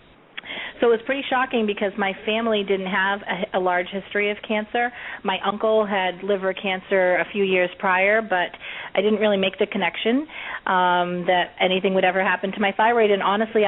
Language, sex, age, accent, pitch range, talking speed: English, female, 30-49, American, 185-220 Hz, 190 wpm